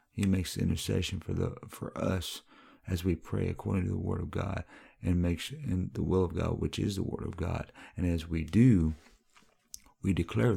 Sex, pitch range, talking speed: male, 85-105 Hz, 200 wpm